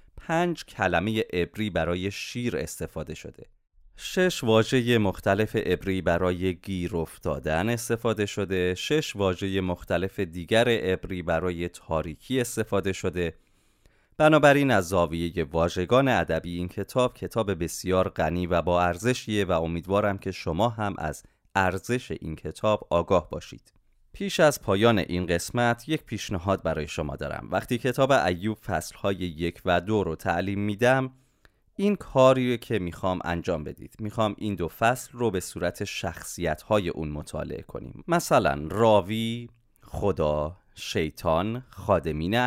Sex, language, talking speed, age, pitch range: male, Persian, 130 wpm, 30-49, 85-115 Hz